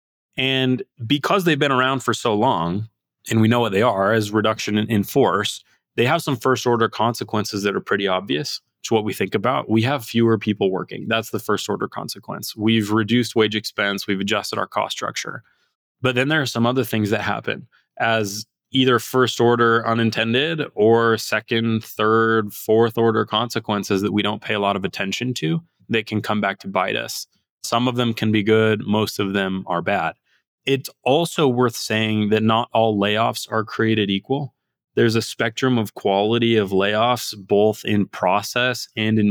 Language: English